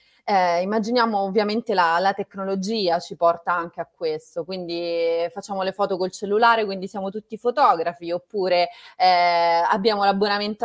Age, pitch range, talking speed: 30-49, 170-235 Hz, 140 wpm